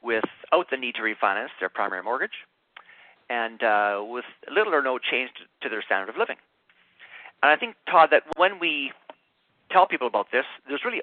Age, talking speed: 40-59, 185 wpm